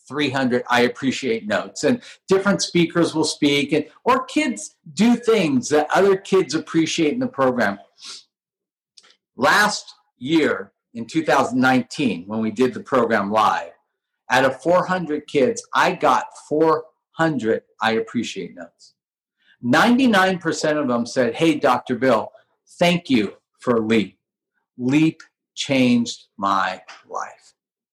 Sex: male